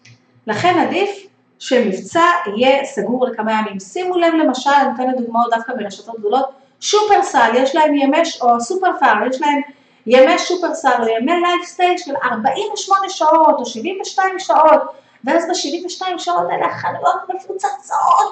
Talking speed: 125 wpm